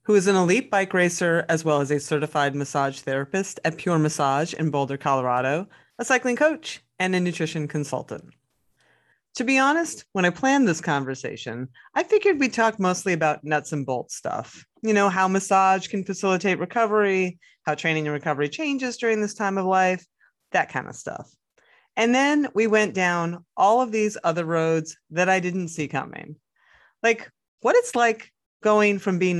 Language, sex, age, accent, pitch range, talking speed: English, female, 30-49, American, 150-215 Hz, 180 wpm